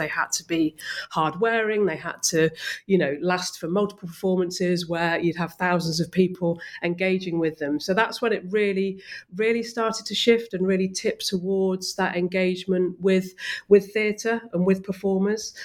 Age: 40-59